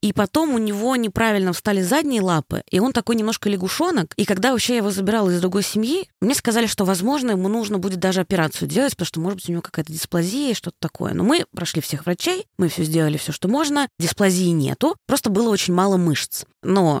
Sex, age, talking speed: female, 20-39, 220 wpm